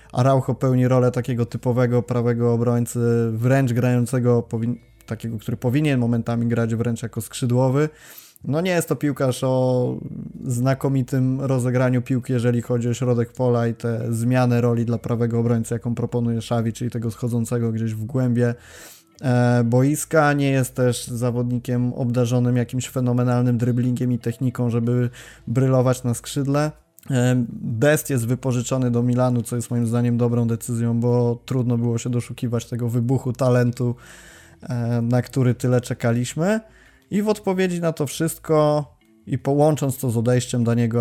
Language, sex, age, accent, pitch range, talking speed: Polish, male, 20-39, native, 120-130 Hz, 145 wpm